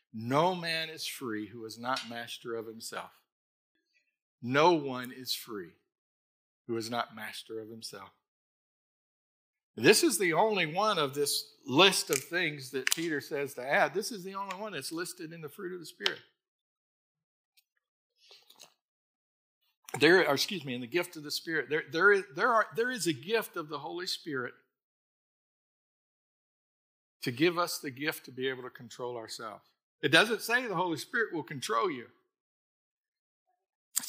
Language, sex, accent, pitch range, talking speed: English, male, American, 145-205 Hz, 155 wpm